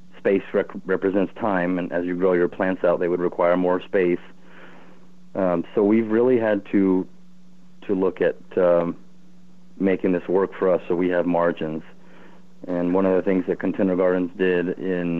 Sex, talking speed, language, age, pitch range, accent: male, 180 wpm, English, 30-49, 90-105 Hz, American